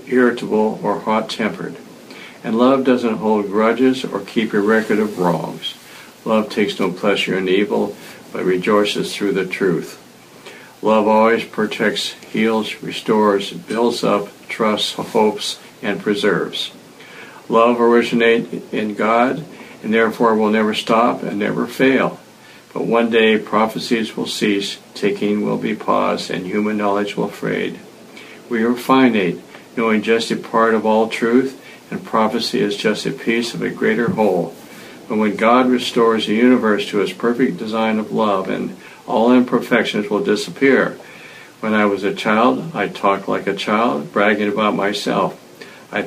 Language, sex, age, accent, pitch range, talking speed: English, male, 60-79, American, 105-120 Hz, 150 wpm